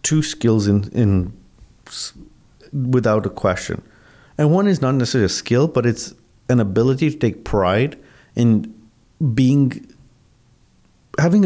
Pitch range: 105-130 Hz